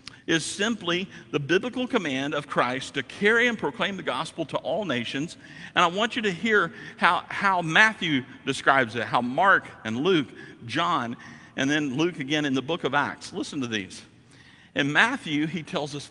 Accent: American